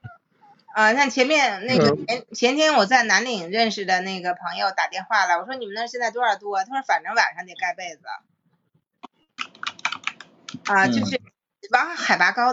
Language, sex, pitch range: Chinese, female, 195-245 Hz